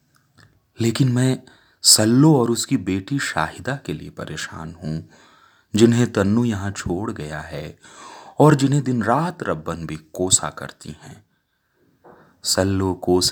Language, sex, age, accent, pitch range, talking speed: Hindi, male, 30-49, native, 90-115 Hz, 125 wpm